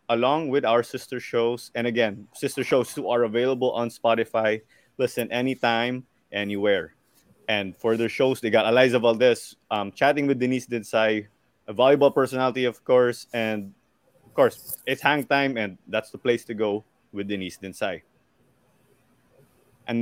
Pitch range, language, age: 115-140 Hz, English, 20-39